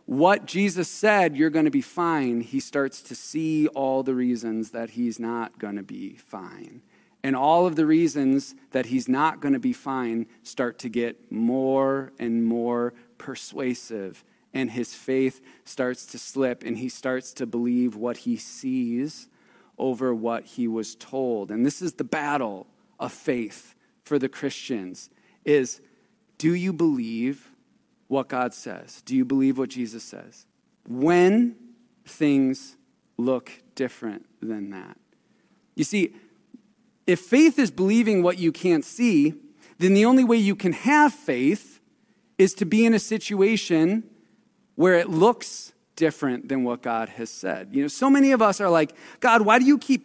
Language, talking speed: English, 160 wpm